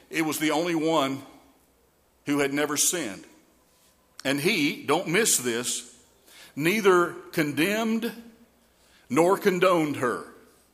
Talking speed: 105 wpm